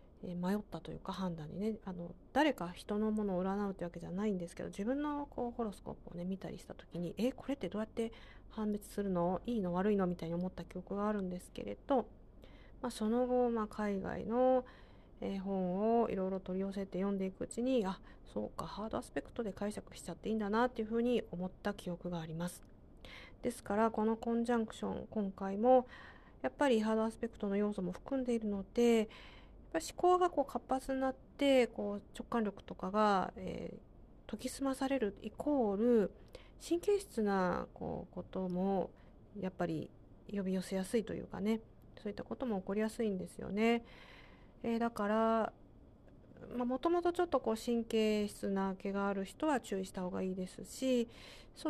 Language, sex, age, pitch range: Japanese, female, 40-59, 190-235 Hz